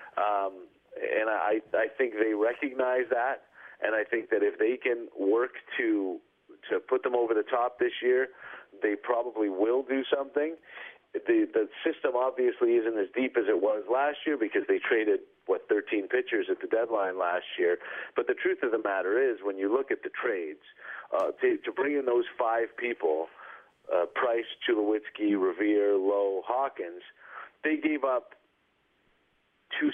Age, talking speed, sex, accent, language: 40-59, 170 wpm, male, American, English